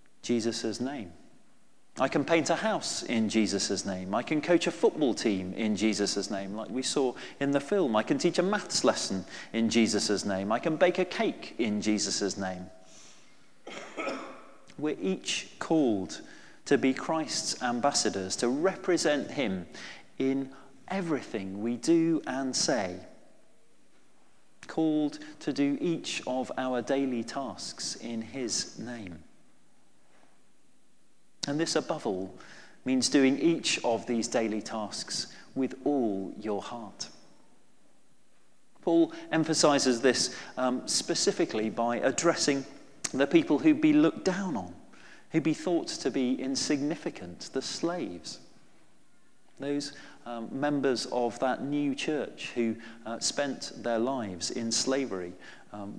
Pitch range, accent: 110-150 Hz, British